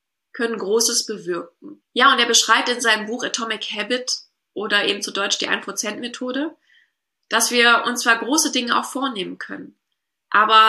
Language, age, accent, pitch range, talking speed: German, 20-39, German, 220-270 Hz, 165 wpm